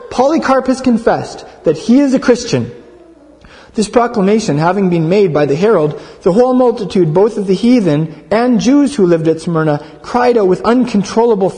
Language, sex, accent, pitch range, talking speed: English, male, American, 165-240 Hz, 170 wpm